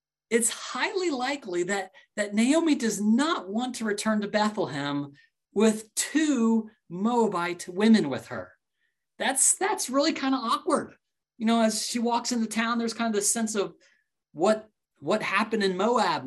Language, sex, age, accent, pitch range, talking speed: English, male, 30-49, American, 160-230 Hz, 160 wpm